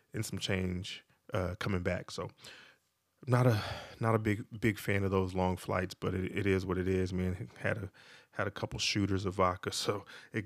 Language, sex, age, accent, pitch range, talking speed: English, male, 20-39, American, 95-110 Hz, 205 wpm